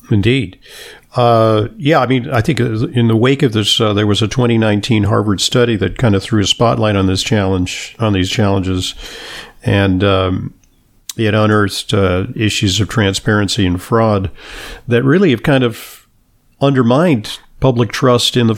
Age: 50-69